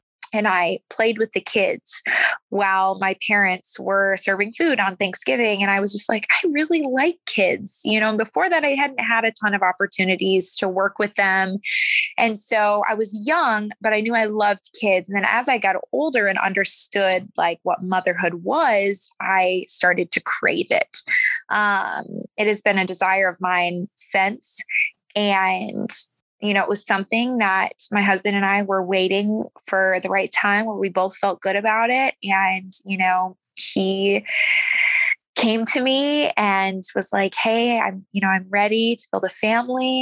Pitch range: 195-235 Hz